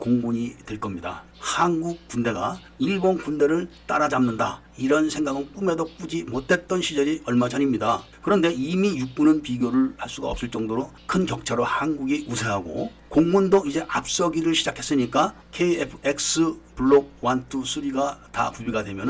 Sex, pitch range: male, 125-175 Hz